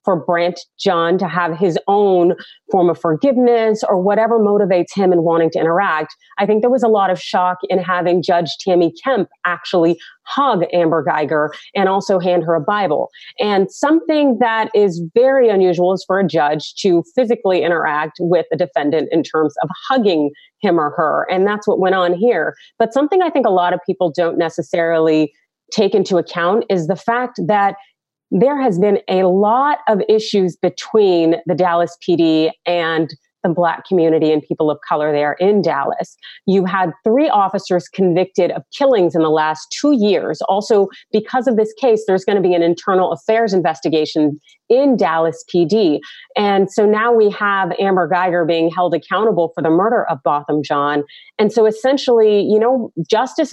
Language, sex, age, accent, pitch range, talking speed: English, female, 30-49, American, 170-215 Hz, 180 wpm